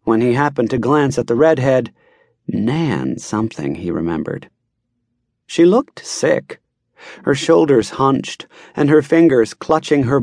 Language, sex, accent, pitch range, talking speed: English, male, American, 120-155 Hz, 135 wpm